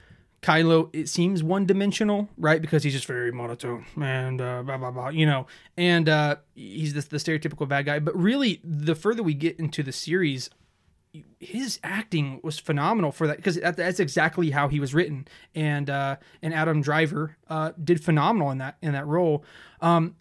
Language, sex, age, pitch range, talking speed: English, male, 20-39, 145-175 Hz, 170 wpm